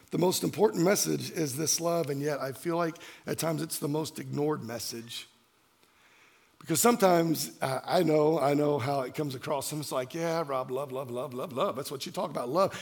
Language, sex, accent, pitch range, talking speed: English, male, American, 150-205 Hz, 215 wpm